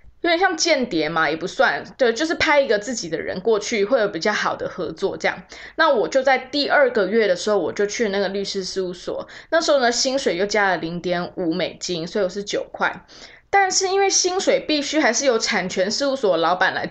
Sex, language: female, Chinese